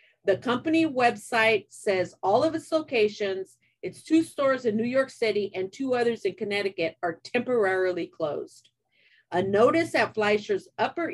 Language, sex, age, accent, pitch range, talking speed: English, female, 50-69, American, 185-255 Hz, 150 wpm